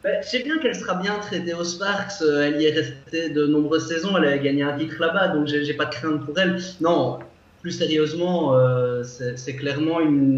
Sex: male